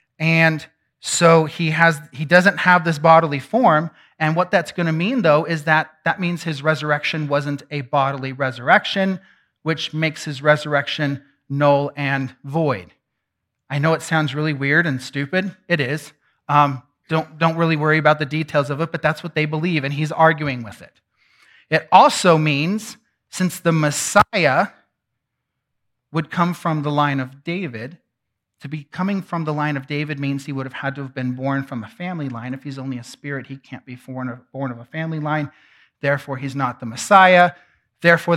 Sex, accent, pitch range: male, American, 140-180 Hz